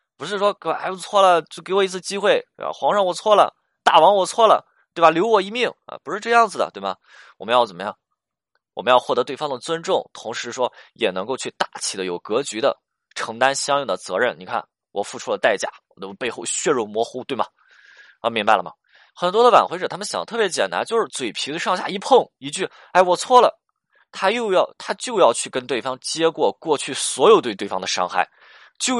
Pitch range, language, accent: 160-205 Hz, Chinese, native